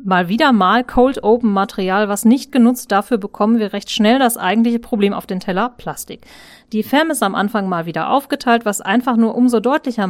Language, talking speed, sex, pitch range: German, 200 wpm, female, 195-245 Hz